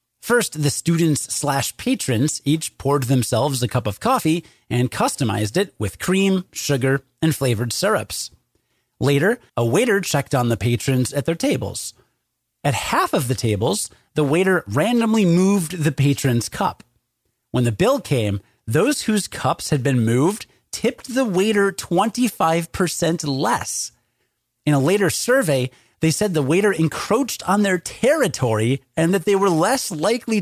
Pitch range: 130-185 Hz